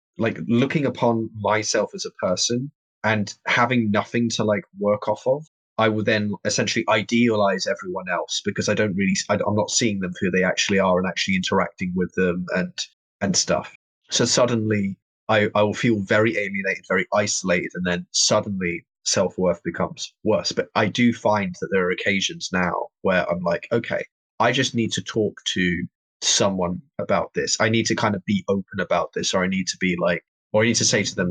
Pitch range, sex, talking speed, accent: 95-115 Hz, male, 195 wpm, British